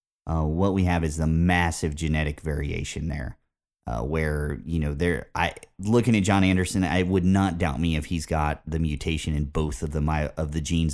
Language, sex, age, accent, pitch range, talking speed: English, male, 30-49, American, 80-100 Hz, 205 wpm